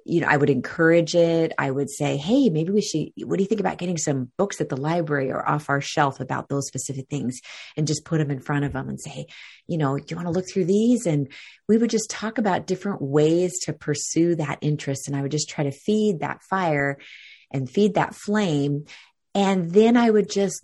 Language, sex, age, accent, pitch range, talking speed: English, female, 30-49, American, 145-185 Hz, 235 wpm